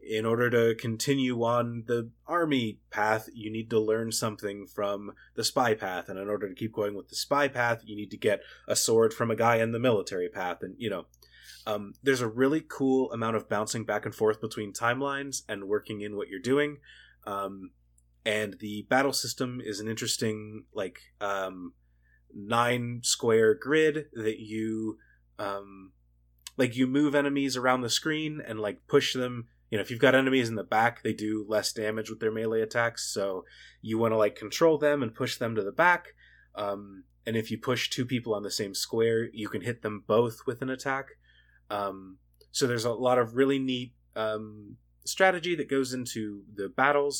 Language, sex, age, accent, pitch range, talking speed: English, male, 30-49, American, 105-130 Hz, 195 wpm